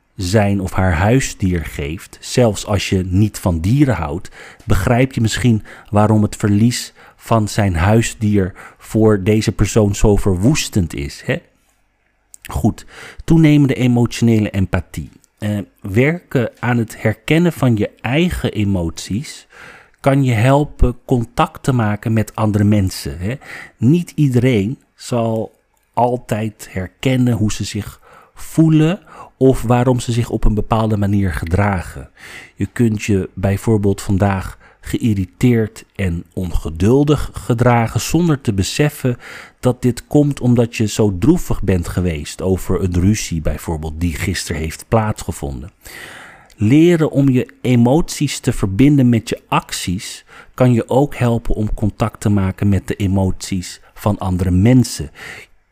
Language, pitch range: Dutch, 95-125 Hz